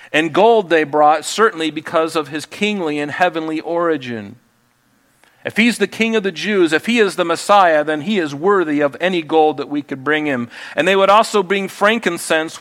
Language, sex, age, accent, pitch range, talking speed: English, male, 40-59, American, 150-190 Hz, 200 wpm